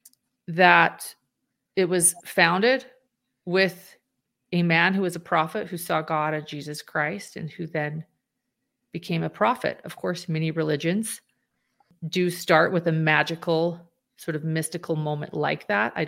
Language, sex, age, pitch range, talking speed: English, female, 30-49, 160-175 Hz, 145 wpm